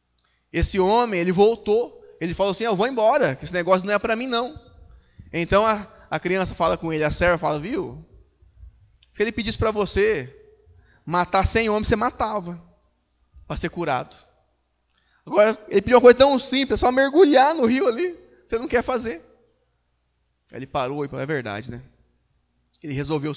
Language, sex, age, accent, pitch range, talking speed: Portuguese, male, 20-39, Brazilian, 125-190 Hz, 175 wpm